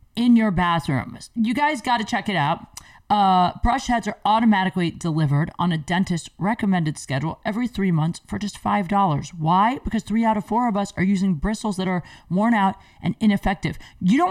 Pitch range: 185-245 Hz